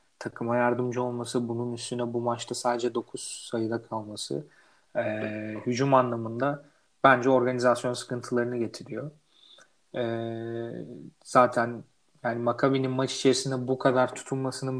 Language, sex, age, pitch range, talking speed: Turkish, male, 30-49, 120-135 Hz, 110 wpm